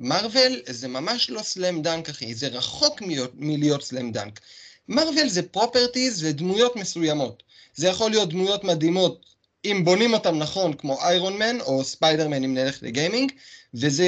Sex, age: male, 30-49